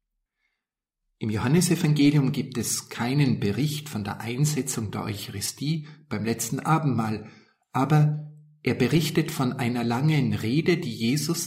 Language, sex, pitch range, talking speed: German, male, 115-150 Hz, 120 wpm